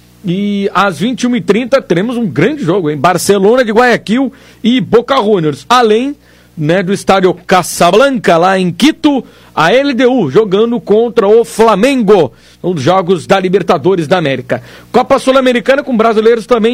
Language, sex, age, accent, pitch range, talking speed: Portuguese, male, 50-69, Brazilian, 165-230 Hz, 145 wpm